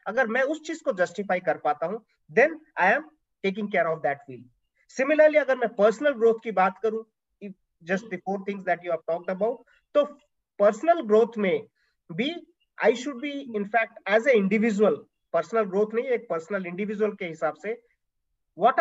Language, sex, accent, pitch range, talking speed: English, male, Indian, 180-250 Hz, 155 wpm